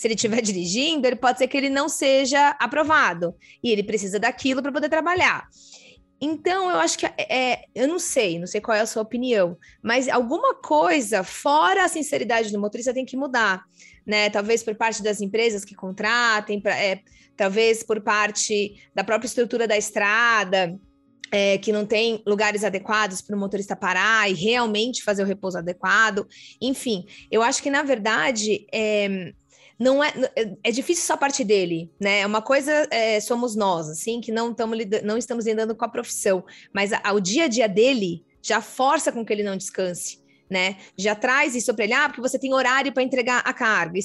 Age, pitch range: 20-39, 210-265 Hz